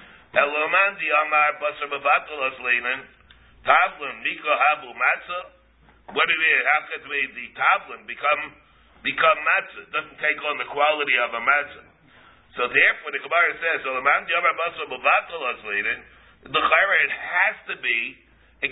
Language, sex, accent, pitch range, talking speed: English, male, American, 135-160 Hz, 140 wpm